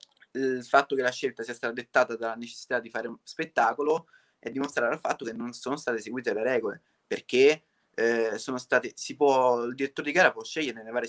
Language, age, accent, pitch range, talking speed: Italian, 20-39, native, 115-145 Hz, 210 wpm